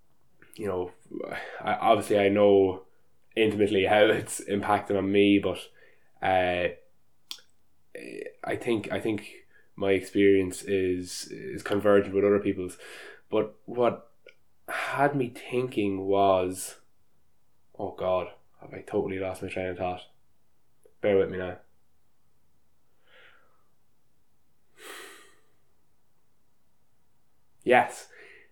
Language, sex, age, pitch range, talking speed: English, male, 10-29, 95-115 Hz, 95 wpm